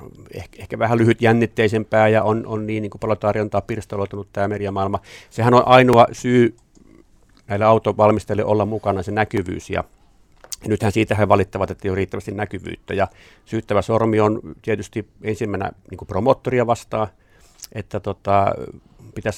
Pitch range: 100-115 Hz